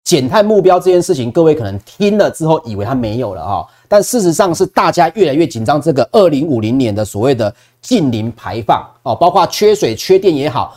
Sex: male